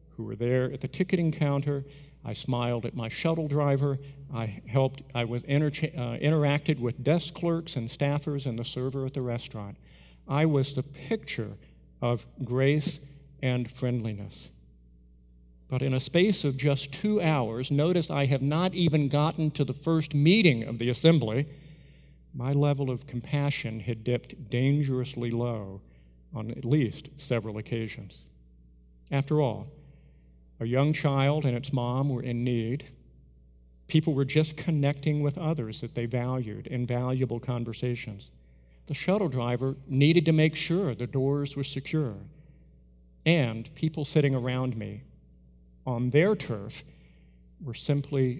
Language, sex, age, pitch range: English, male, 50-69, 110-145 Hz